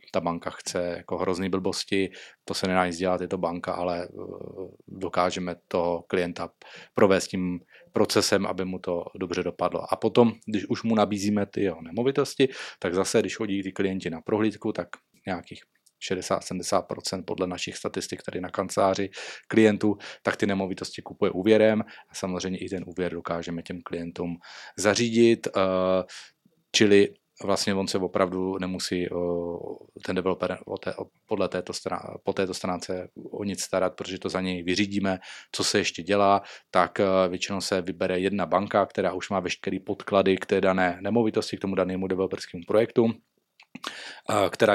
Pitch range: 90-100 Hz